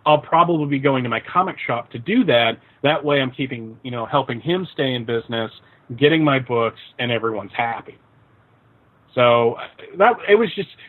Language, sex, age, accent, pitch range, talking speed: English, male, 30-49, American, 125-165 Hz, 180 wpm